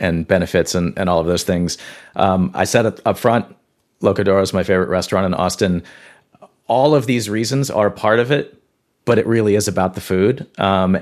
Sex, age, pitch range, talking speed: male, 40-59, 90-100 Hz, 195 wpm